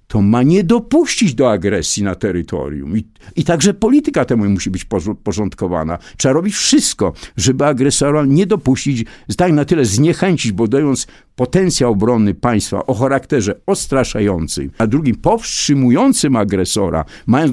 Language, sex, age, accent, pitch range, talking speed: Polish, male, 50-69, native, 105-150 Hz, 135 wpm